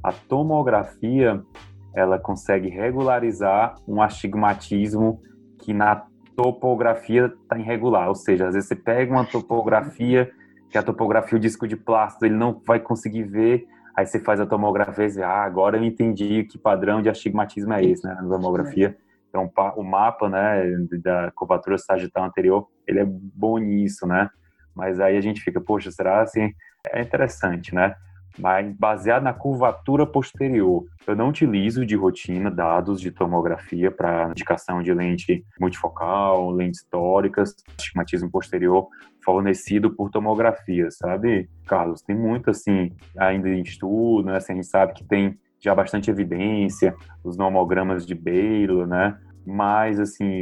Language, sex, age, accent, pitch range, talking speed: Portuguese, male, 20-39, Brazilian, 95-110 Hz, 150 wpm